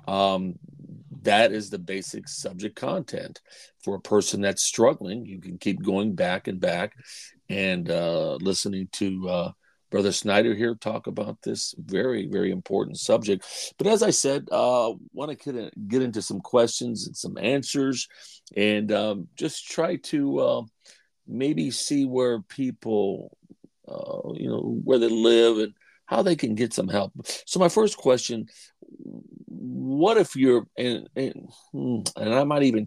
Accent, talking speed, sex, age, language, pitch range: American, 155 wpm, male, 40-59, English, 100-135 Hz